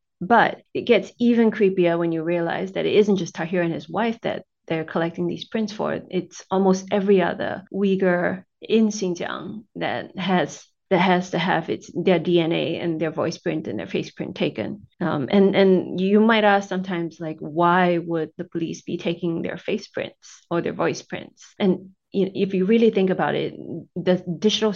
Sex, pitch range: female, 170-195 Hz